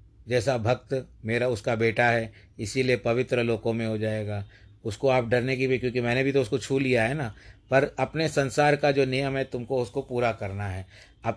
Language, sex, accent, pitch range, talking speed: Hindi, male, native, 110-130 Hz, 205 wpm